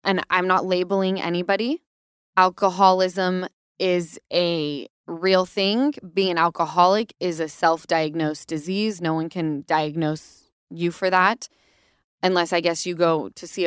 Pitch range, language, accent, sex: 170-205 Hz, English, American, female